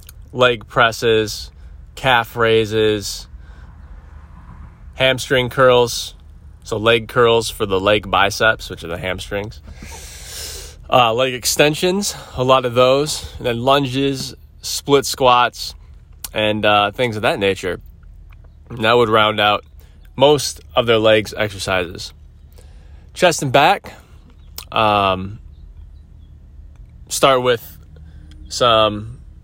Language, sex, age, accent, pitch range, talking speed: English, male, 20-39, American, 75-115 Hz, 105 wpm